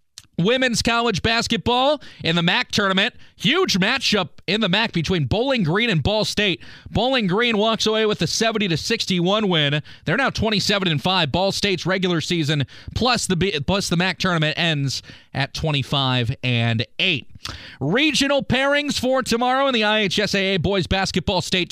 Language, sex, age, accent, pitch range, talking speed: English, male, 30-49, American, 155-220 Hz, 165 wpm